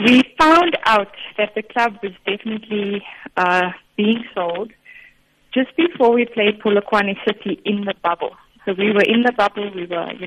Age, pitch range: 20-39, 190-225 Hz